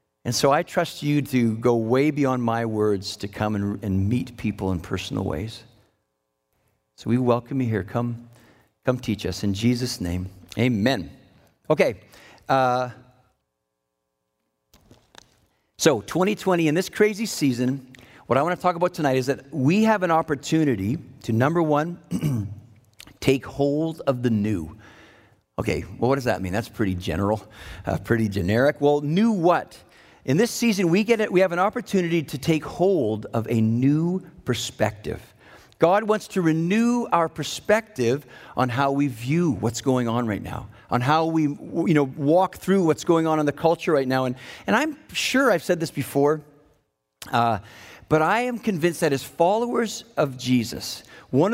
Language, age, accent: English, 50-69, American